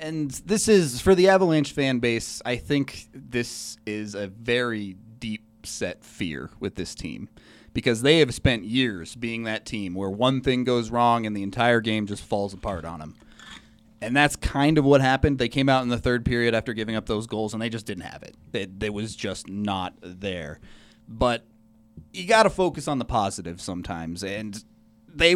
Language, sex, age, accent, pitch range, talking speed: English, male, 30-49, American, 110-140 Hz, 195 wpm